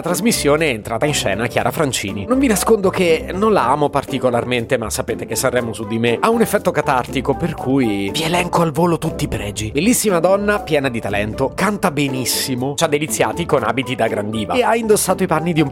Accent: native